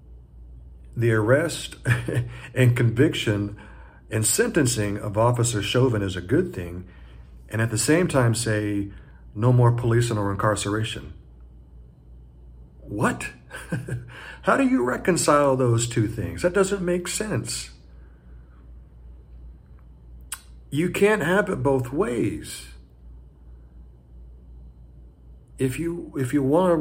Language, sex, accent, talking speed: English, male, American, 105 wpm